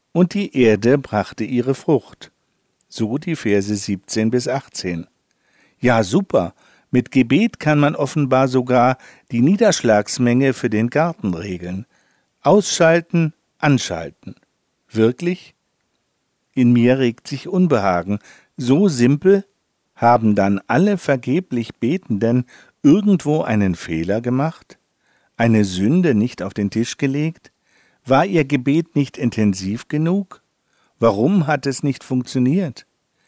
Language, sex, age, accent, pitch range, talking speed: German, male, 50-69, German, 110-155 Hz, 115 wpm